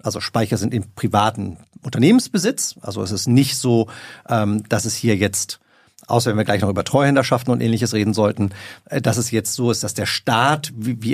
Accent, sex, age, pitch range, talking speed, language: German, male, 40-59, 115-160 Hz, 190 wpm, German